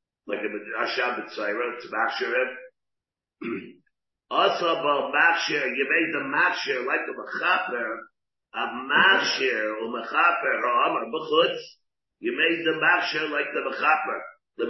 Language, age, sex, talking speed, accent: English, 50-69, male, 115 wpm, American